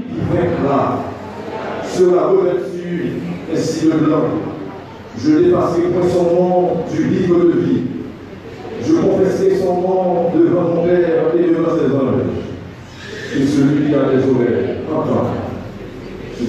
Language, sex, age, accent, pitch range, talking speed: French, male, 50-69, French, 120-155 Hz, 140 wpm